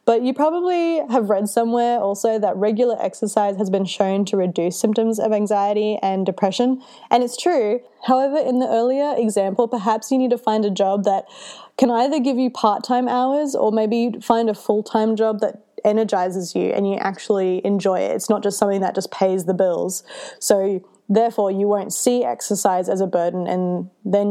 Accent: Australian